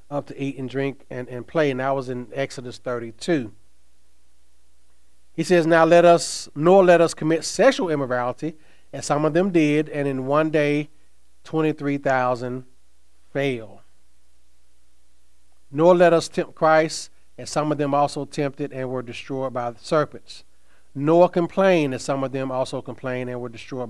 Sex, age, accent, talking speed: male, 30-49, American, 160 wpm